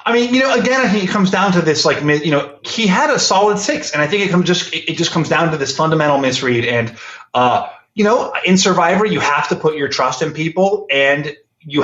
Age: 30-49